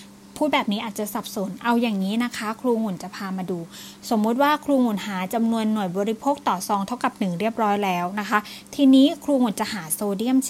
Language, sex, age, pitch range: Thai, female, 20-39, 200-255 Hz